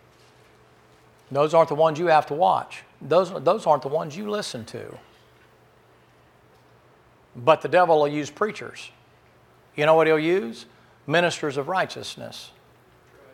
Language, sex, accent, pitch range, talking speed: English, male, American, 140-170 Hz, 135 wpm